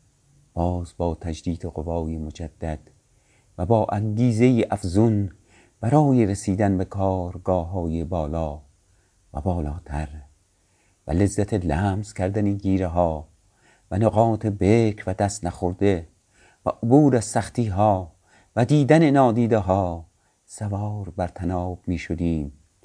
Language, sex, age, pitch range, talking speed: Persian, male, 50-69, 85-105 Hz, 105 wpm